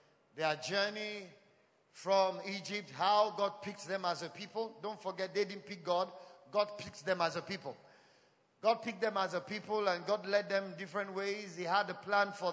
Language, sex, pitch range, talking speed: English, male, 190-220 Hz, 190 wpm